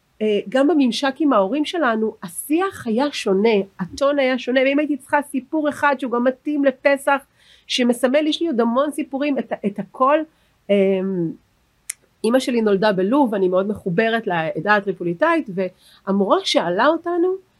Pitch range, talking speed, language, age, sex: 195-275 Hz, 145 wpm, Hebrew, 40-59, female